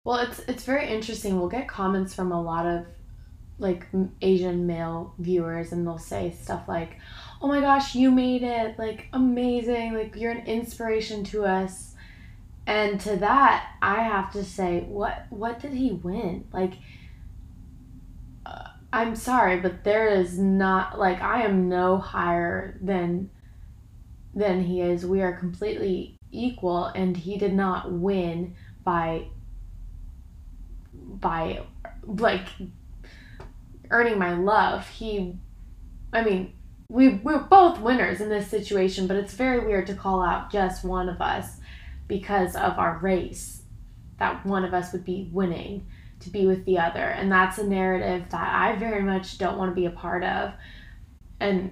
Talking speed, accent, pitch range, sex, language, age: 155 wpm, American, 170-205 Hz, female, English, 20-39